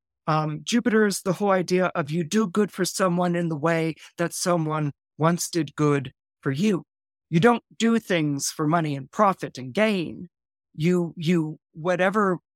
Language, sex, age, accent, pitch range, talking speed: English, male, 50-69, American, 155-190 Hz, 160 wpm